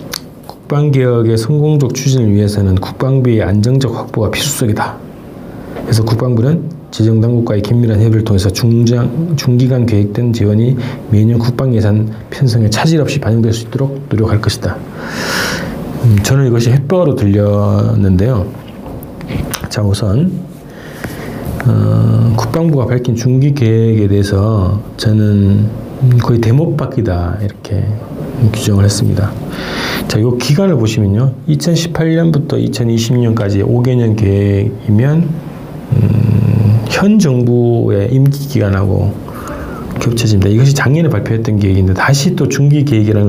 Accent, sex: native, male